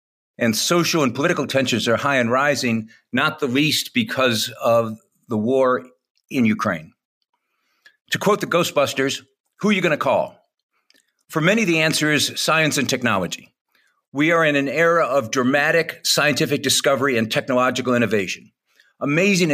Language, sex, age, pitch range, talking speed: English, male, 50-69, 125-160 Hz, 150 wpm